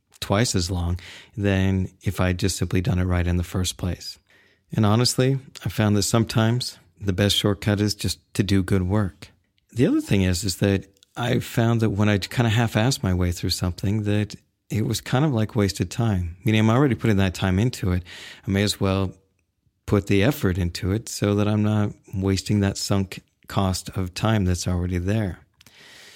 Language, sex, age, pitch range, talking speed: English, male, 40-59, 95-115 Hz, 195 wpm